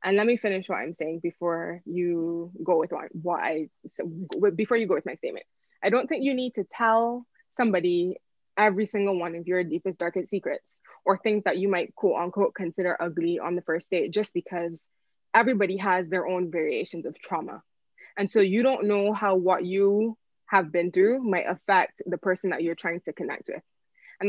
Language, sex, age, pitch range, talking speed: English, female, 20-39, 175-210 Hz, 200 wpm